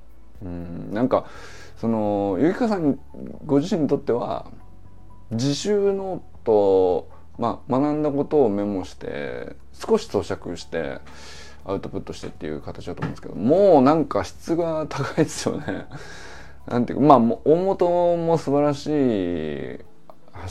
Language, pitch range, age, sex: Japanese, 90-140 Hz, 20-39, male